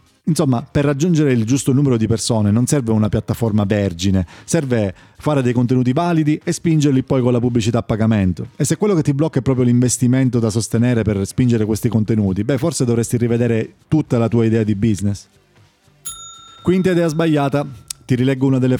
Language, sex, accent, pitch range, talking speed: Italian, male, native, 115-145 Hz, 185 wpm